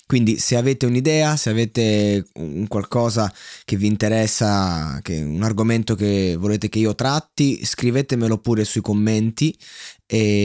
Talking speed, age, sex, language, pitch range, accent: 130 wpm, 20-39, male, Italian, 105-130 Hz, native